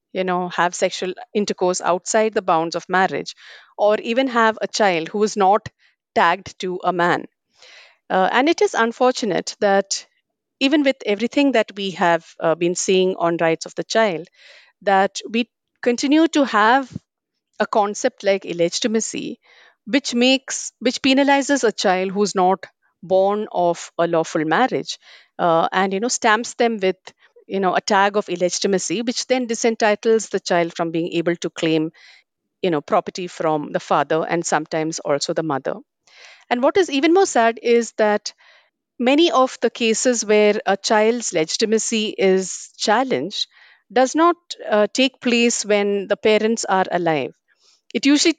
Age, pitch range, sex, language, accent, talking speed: 50-69, 185-245 Hz, female, English, Indian, 160 wpm